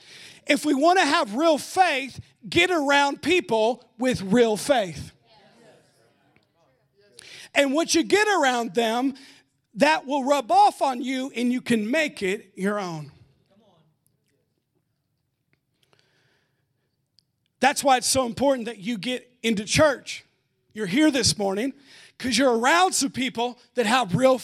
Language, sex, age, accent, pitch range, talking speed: English, male, 40-59, American, 195-300 Hz, 135 wpm